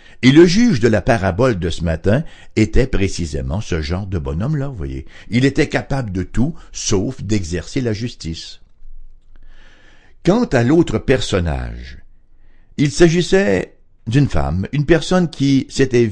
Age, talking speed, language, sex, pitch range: 60-79, 140 wpm, English, male, 90-125 Hz